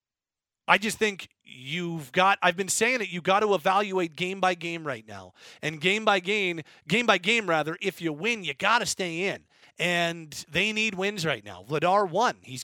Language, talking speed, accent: English, 205 wpm, American